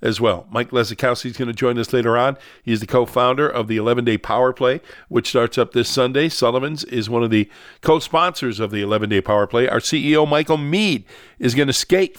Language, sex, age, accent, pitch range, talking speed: English, male, 50-69, American, 120-145 Hz, 230 wpm